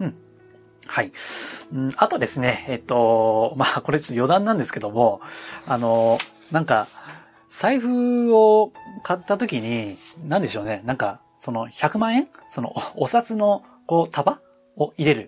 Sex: male